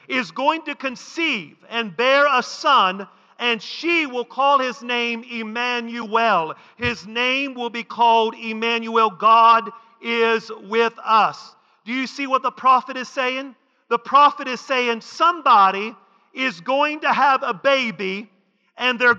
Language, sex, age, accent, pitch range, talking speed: English, male, 40-59, American, 225-265 Hz, 145 wpm